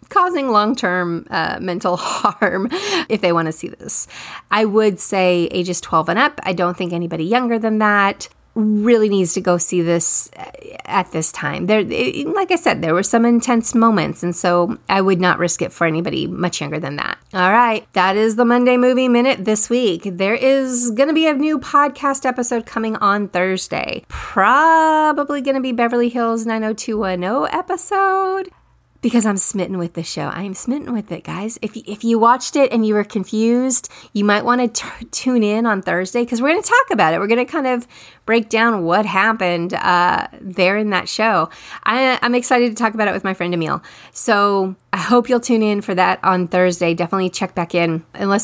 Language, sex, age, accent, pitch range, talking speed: English, female, 30-49, American, 185-245 Hz, 200 wpm